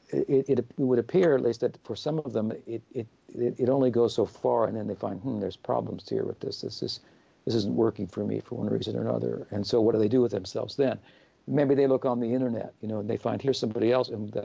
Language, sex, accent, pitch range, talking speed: English, male, American, 115-135 Hz, 270 wpm